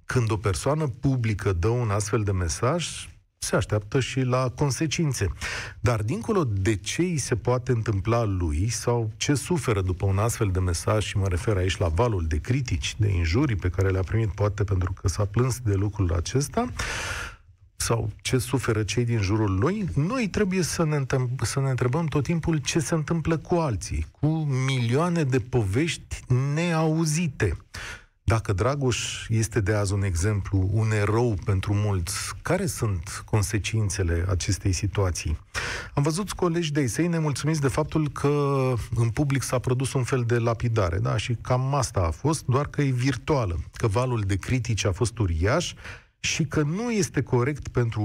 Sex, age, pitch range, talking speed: male, 40-59, 100-135 Hz, 165 wpm